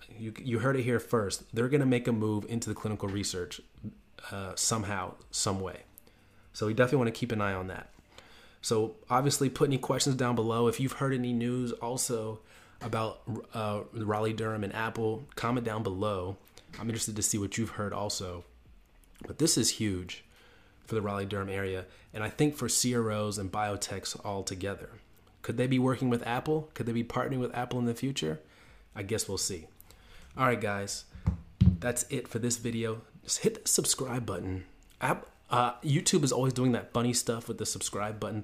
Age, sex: 30-49, male